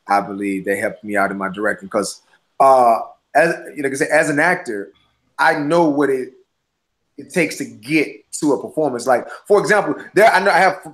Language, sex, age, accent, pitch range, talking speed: English, male, 30-49, American, 125-155 Hz, 195 wpm